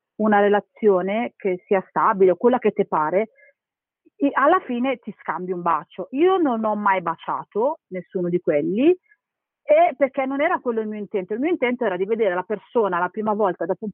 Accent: native